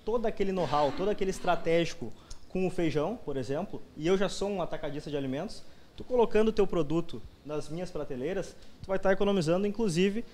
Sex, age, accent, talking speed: male, 20-39, Brazilian, 185 wpm